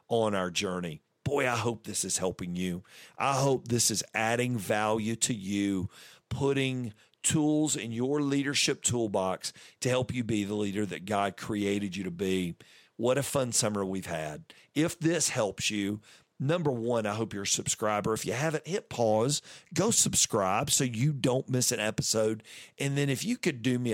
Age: 50-69